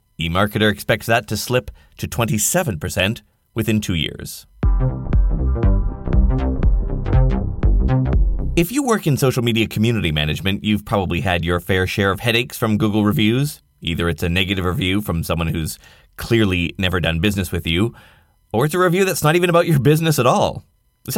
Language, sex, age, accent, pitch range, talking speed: English, male, 30-49, American, 95-145 Hz, 160 wpm